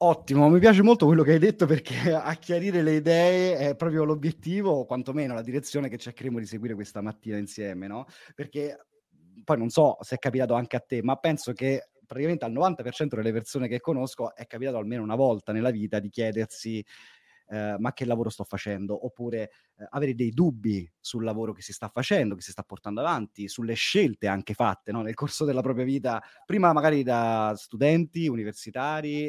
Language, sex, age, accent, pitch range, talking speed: Italian, male, 30-49, native, 105-145 Hz, 185 wpm